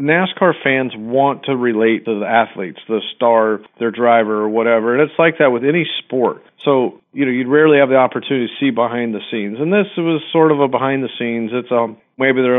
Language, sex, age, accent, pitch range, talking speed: English, male, 40-59, American, 110-130 Hz, 225 wpm